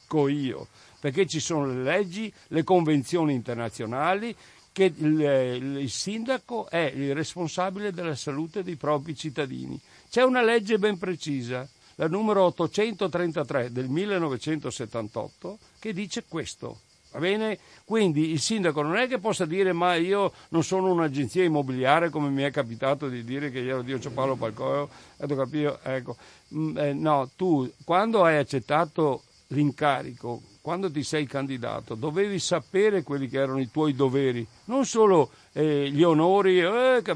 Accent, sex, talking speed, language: native, male, 140 wpm, Italian